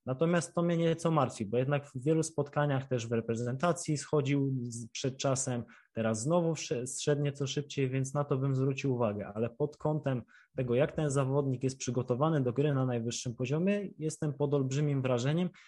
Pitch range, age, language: 120-150 Hz, 20-39, Polish